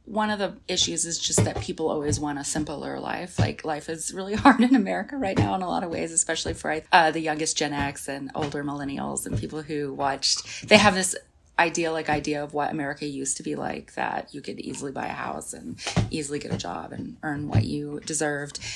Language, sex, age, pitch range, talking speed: English, female, 30-49, 145-170 Hz, 225 wpm